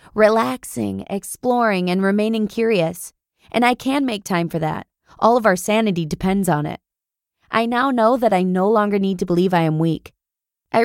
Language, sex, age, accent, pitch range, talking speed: English, female, 20-39, American, 170-220 Hz, 185 wpm